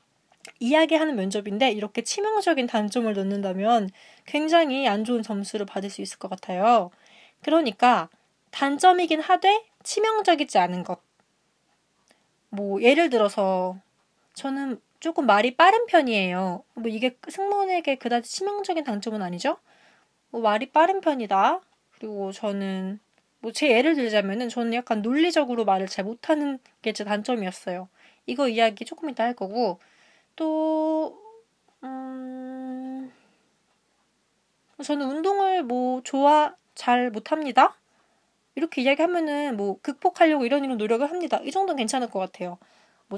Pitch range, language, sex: 210-310 Hz, Korean, female